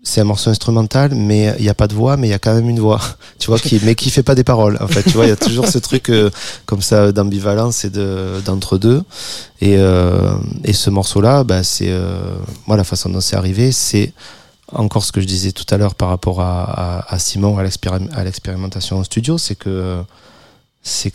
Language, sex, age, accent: French, male, 30-49, French